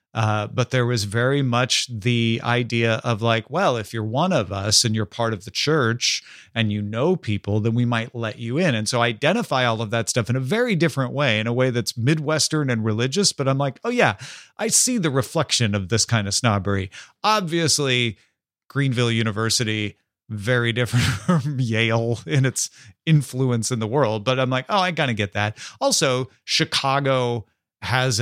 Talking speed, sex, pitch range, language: 195 wpm, male, 110-135 Hz, English